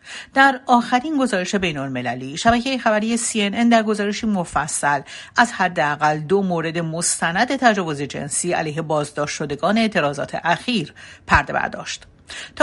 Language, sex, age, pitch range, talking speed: Persian, female, 60-79, 160-205 Hz, 120 wpm